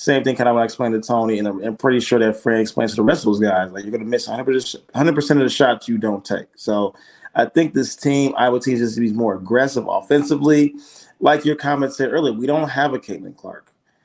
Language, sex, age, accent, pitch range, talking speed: English, male, 20-39, American, 110-140 Hz, 250 wpm